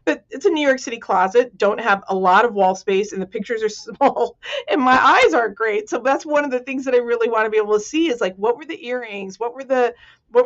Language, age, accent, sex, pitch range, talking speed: English, 40-59, American, female, 200-270 Hz, 280 wpm